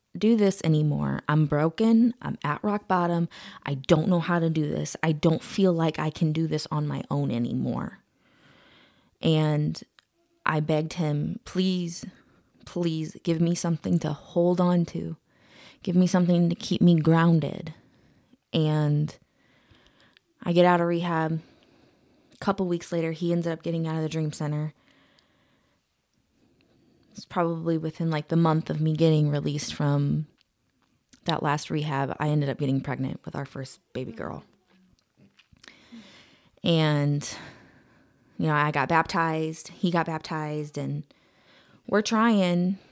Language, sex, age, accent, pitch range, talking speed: English, female, 20-39, American, 150-180 Hz, 145 wpm